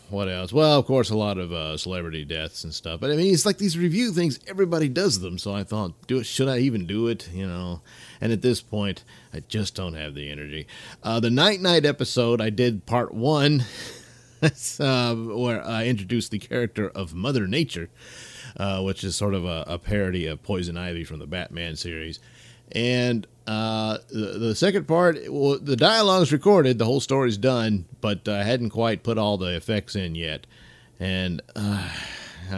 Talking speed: 190 wpm